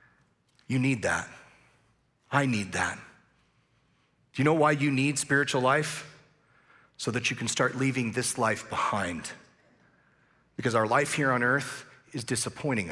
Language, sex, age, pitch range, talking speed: English, male, 40-59, 115-135 Hz, 145 wpm